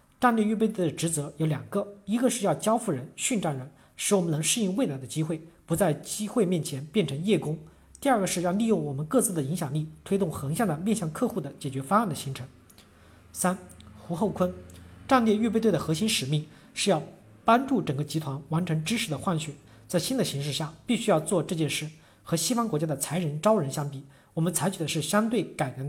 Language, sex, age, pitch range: Chinese, male, 40-59, 150-200 Hz